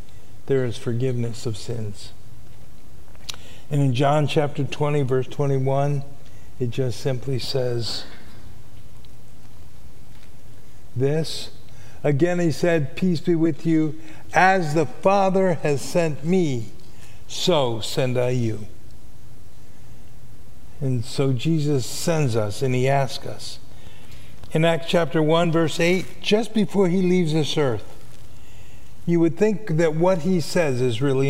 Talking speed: 125 wpm